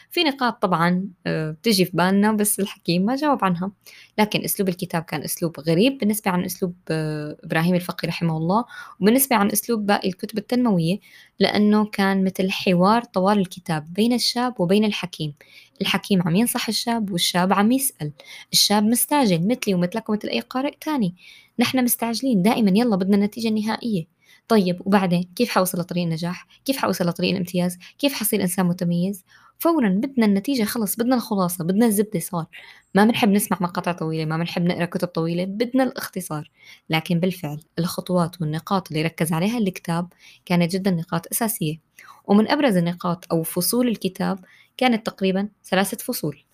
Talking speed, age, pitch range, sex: 155 wpm, 20-39, 175-220 Hz, female